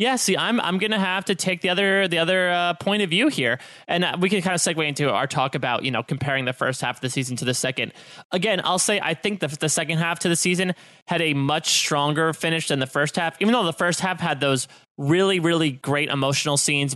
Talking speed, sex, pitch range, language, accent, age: 260 wpm, male, 140-185 Hz, English, American, 20-39